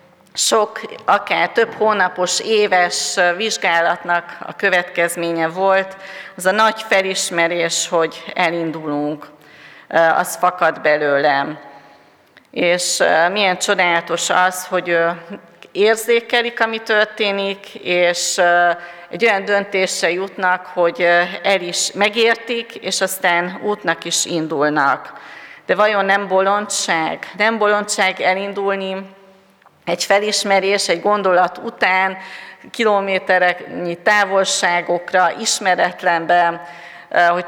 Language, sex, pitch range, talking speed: Hungarian, female, 170-195 Hz, 90 wpm